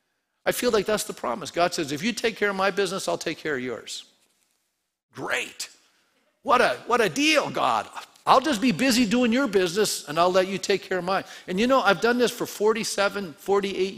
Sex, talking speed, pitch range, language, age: male, 215 wpm, 150-210 Hz, English, 50-69